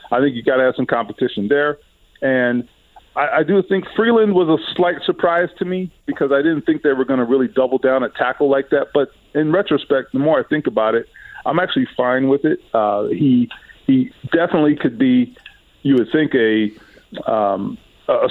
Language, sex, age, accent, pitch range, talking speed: English, male, 40-59, American, 125-175 Hz, 205 wpm